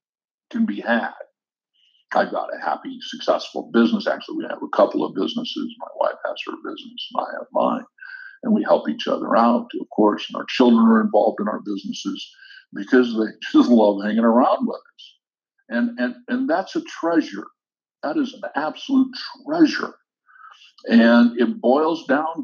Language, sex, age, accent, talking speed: English, male, 60-79, American, 170 wpm